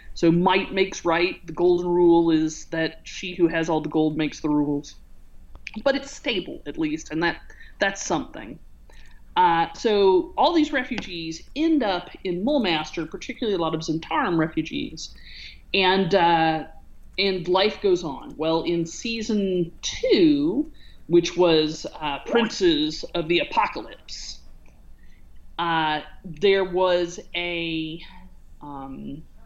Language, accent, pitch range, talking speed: English, American, 160-235 Hz, 130 wpm